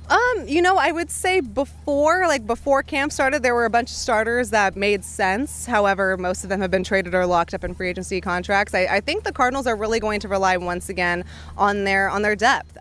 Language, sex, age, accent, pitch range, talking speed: English, female, 20-39, American, 185-225 Hz, 240 wpm